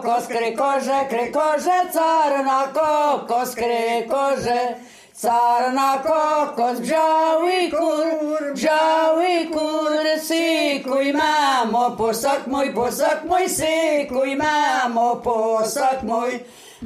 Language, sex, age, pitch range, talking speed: Polish, female, 50-69, 245-310 Hz, 55 wpm